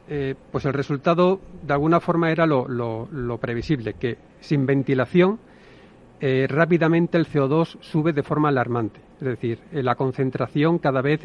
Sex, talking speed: male, 155 wpm